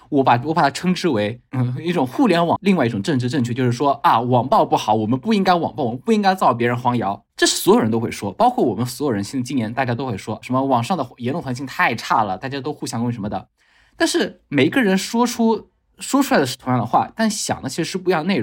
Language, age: Chinese, 20-39